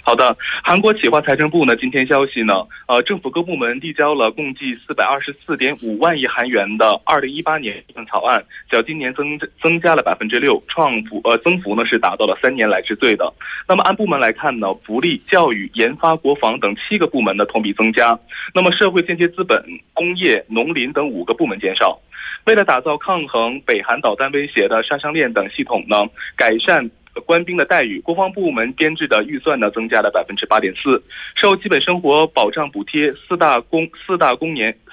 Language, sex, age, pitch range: Korean, male, 20-39, 125-180 Hz